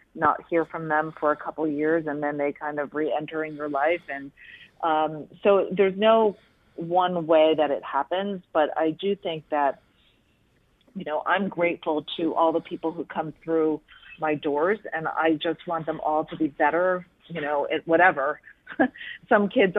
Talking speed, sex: 180 wpm, female